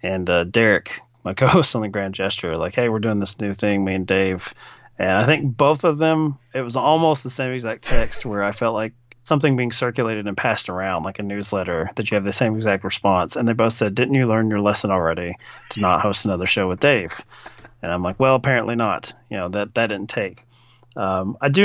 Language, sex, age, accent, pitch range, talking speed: English, male, 30-49, American, 100-135 Hz, 235 wpm